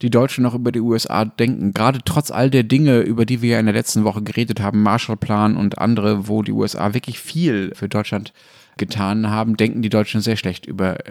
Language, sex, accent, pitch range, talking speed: German, male, German, 110-140 Hz, 215 wpm